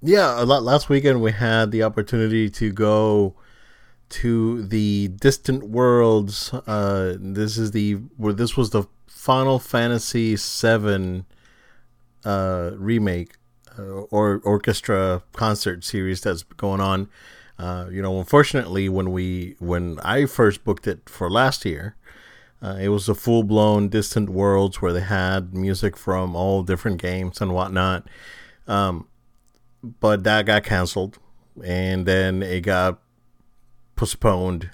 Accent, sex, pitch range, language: American, male, 95-120 Hz, English